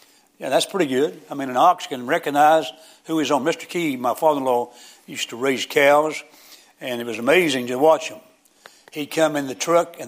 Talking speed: 200 wpm